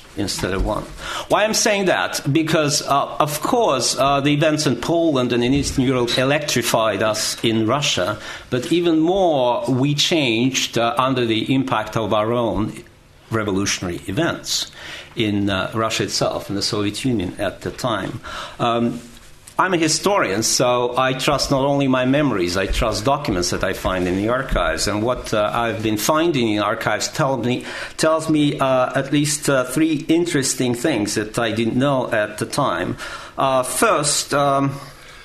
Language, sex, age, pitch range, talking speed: English, male, 50-69, 110-140 Hz, 160 wpm